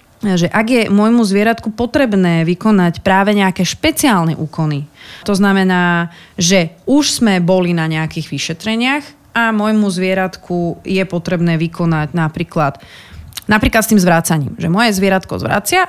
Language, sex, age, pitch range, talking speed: Slovak, female, 30-49, 165-210 Hz, 130 wpm